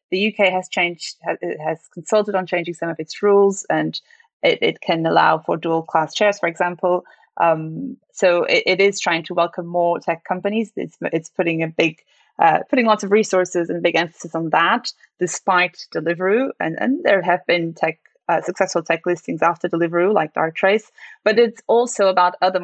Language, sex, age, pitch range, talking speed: English, female, 20-39, 165-190 Hz, 185 wpm